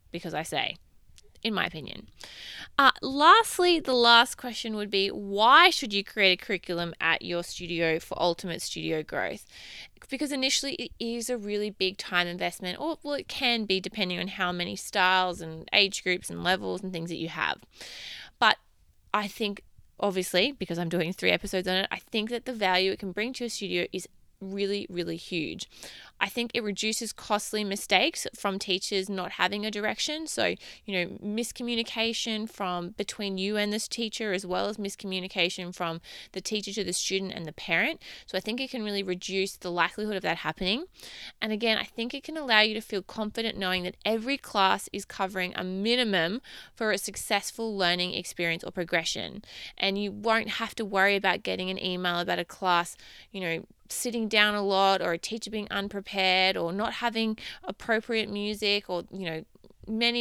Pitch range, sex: 180-220 Hz, female